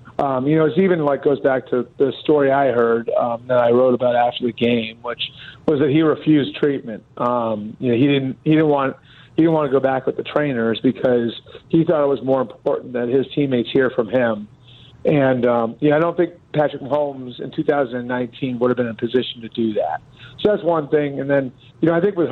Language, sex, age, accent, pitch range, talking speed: English, male, 40-59, American, 120-145 Hz, 240 wpm